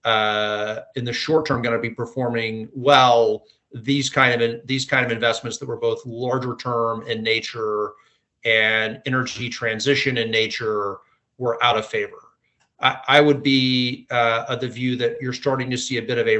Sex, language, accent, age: male, English, American, 30-49